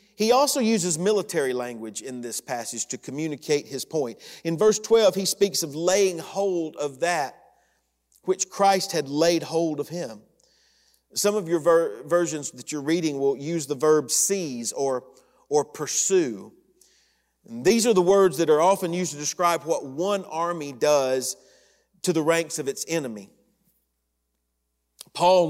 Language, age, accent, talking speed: English, 40-59, American, 155 wpm